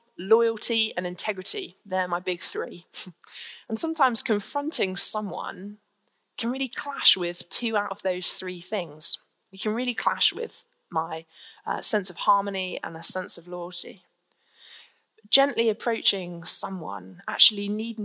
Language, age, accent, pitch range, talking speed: English, 20-39, British, 180-235 Hz, 135 wpm